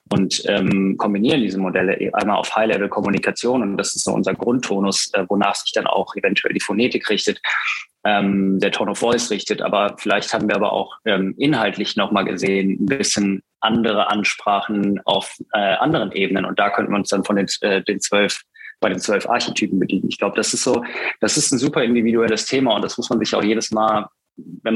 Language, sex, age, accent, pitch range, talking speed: German, male, 20-39, German, 100-110 Hz, 195 wpm